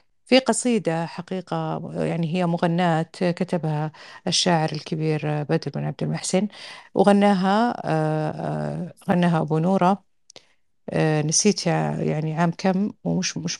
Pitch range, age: 150-185 Hz, 50-69